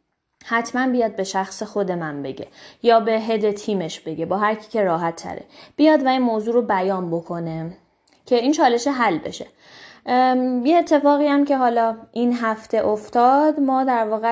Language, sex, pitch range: Persian, female, 200-255 Hz